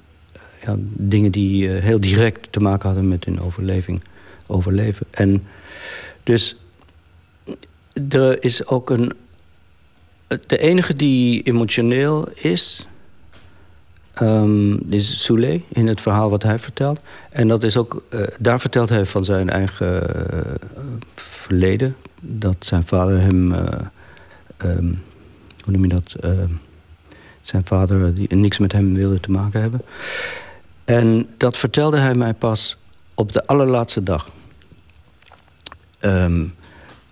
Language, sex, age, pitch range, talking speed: Dutch, male, 60-79, 90-115 Hz, 125 wpm